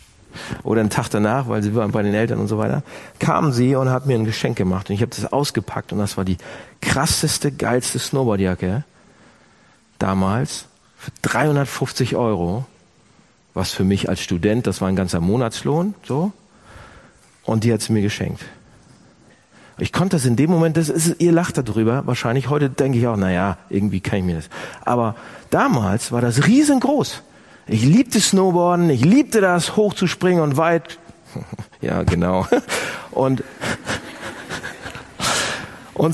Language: German